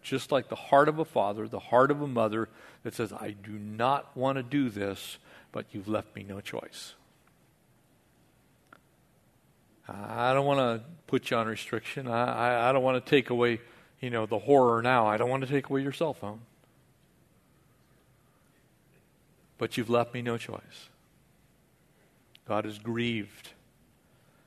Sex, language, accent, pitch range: male, English, American, 115-155 Hz